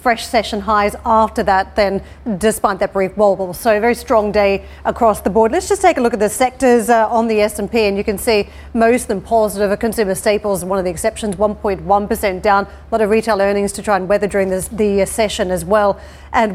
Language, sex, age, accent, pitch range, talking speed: English, female, 40-59, Australian, 205-230 Hz, 230 wpm